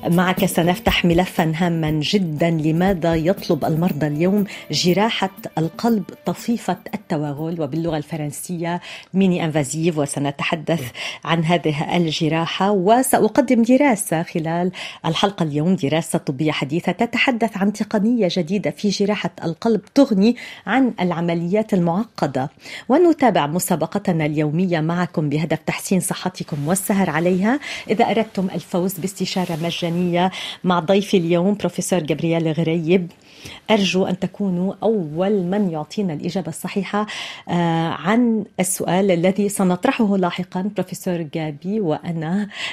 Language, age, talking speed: Arabic, 40-59, 105 wpm